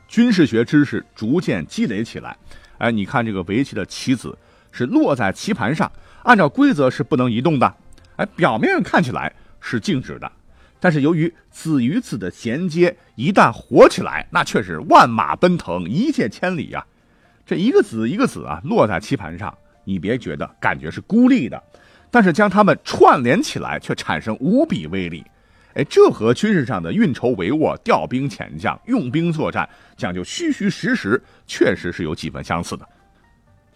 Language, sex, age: Chinese, male, 50-69